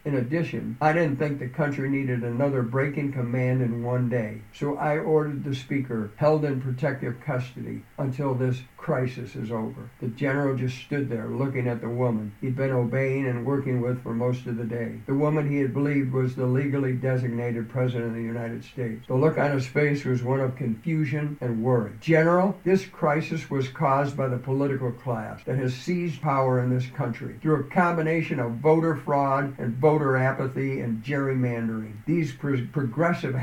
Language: English